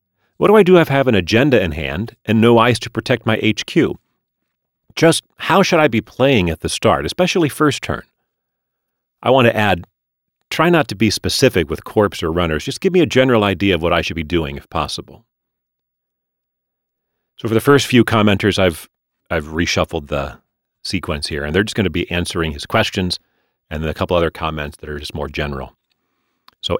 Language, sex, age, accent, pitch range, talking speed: English, male, 40-59, American, 85-120 Hz, 200 wpm